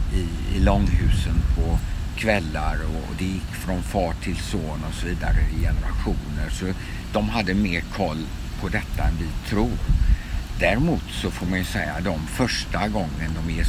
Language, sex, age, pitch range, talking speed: Swedish, male, 60-79, 75-95 Hz, 160 wpm